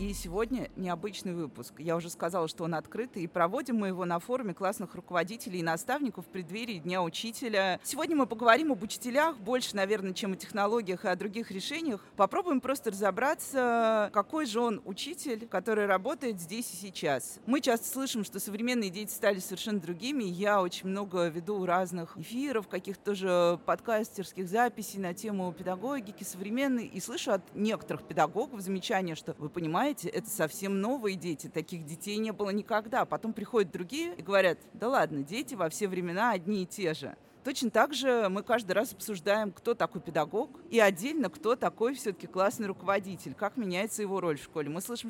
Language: Russian